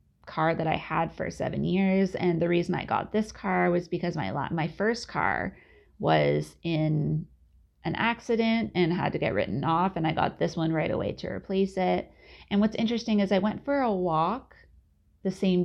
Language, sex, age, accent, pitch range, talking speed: English, female, 30-49, American, 160-205 Hz, 195 wpm